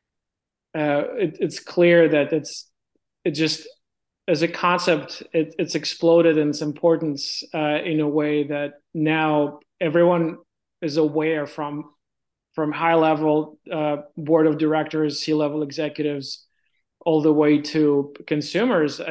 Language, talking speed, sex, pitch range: English, 130 wpm, male, 145-160 Hz